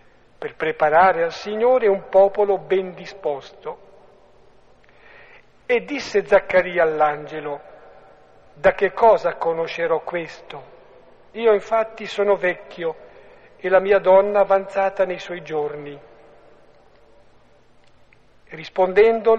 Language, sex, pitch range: Italian, male, 165-200 Hz